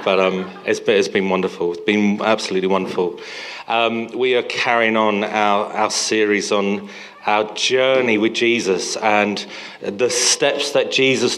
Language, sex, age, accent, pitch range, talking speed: English, male, 40-59, British, 105-170 Hz, 160 wpm